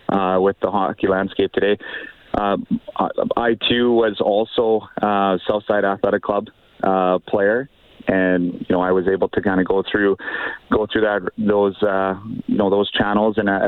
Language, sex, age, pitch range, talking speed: English, male, 30-49, 95-105 Hz, 180 wpm